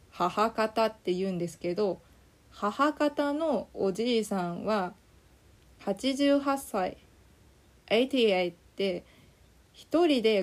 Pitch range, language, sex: 185-255 Hz, Japanese, female